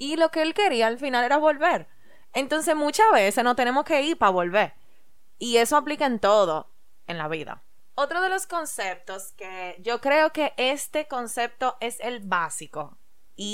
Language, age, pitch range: Spanish, 20-39, 200-270 Hz